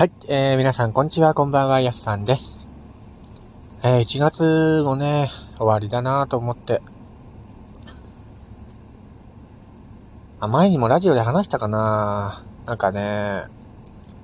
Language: Japanese